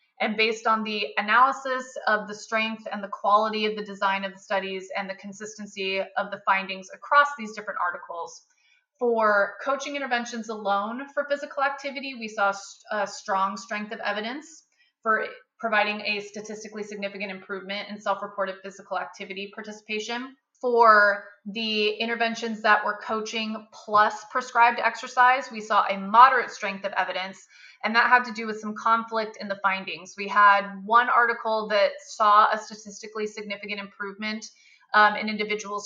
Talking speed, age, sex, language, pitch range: 155 wpm, 20-39, female, English, 200-230 Hz